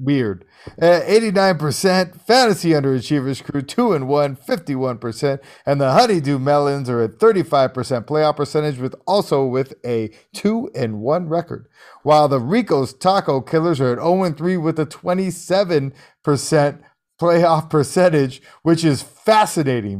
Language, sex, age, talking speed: English, male, 50-69, 115 wpm